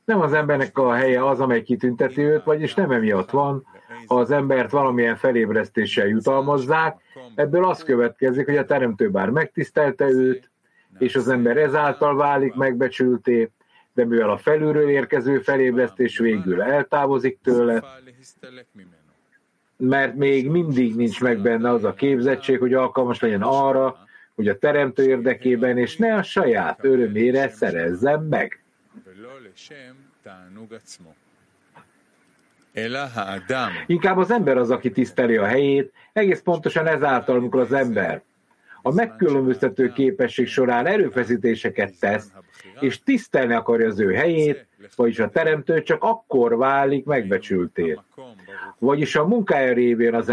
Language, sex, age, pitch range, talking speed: English, male, 50-69, 125-145 Hz, 125 wpm